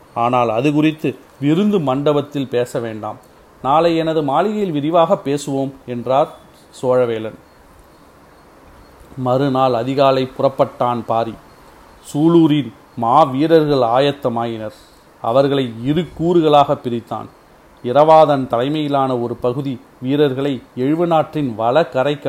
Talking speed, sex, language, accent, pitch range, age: 90 wpm, male, Tamil, native, 120-150 Hz, 40-59